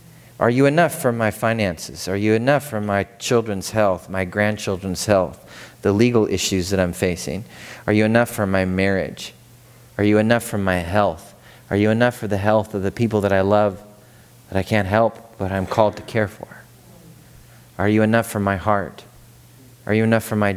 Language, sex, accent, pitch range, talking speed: English, male, American, 100-120 Hz, 195 wpm